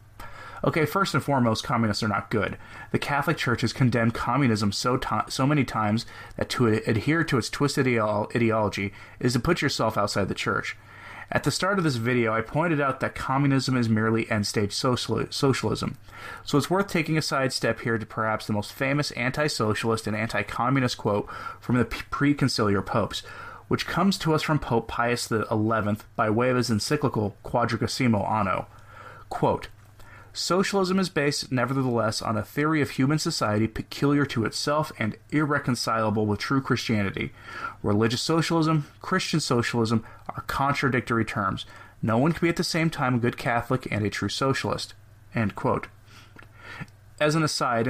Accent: American